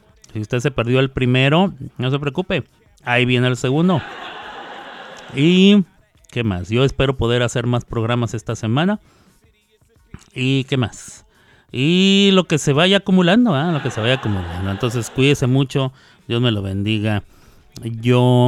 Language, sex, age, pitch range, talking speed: Spanish, male, 30-49, 115-145 Hz, 155 wpm